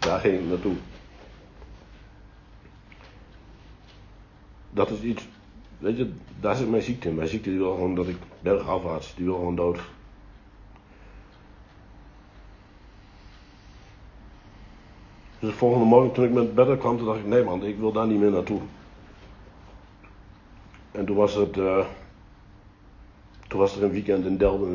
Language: Dutch